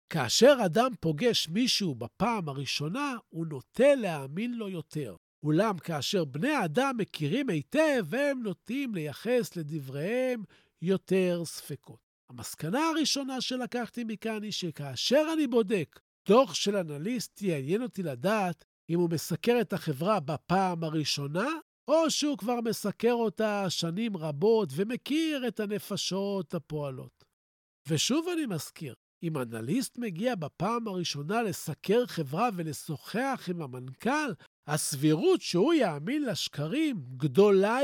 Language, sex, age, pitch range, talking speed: Hebrew, male, 50-69, 160-240 Hz, 115 wpm